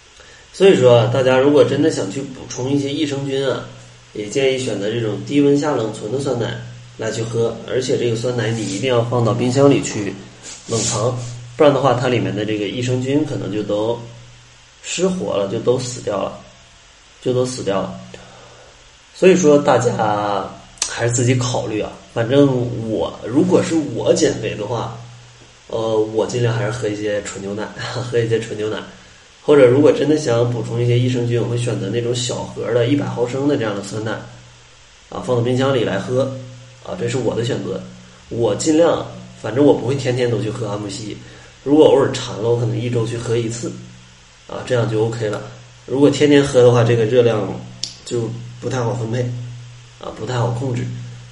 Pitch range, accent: 105-125 Hz, native